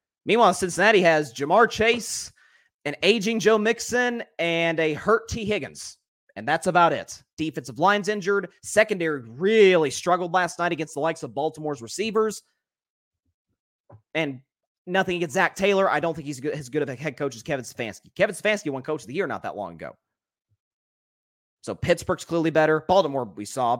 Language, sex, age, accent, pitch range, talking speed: English, male, 30-49, American, 140-190 Hz, 170 wpm